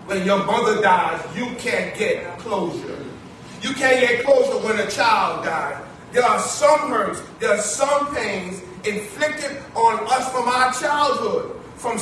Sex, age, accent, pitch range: male, 30-49, American, 225-285 Hz